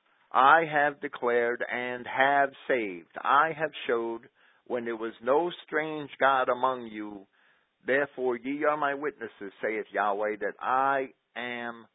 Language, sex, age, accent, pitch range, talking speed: English, male, 50-69, American, 115-140 Hz, 135 wpm